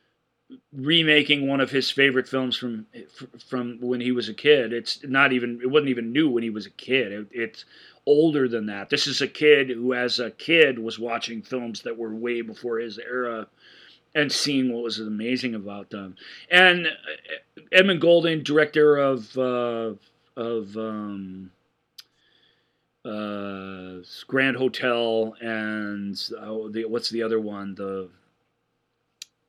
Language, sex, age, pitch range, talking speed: English, male, 40-59, 115-150 Hz, 150 wpm